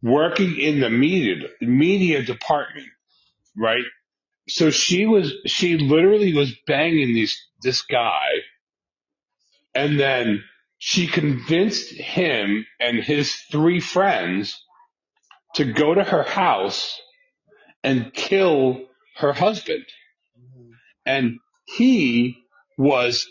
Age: 40-59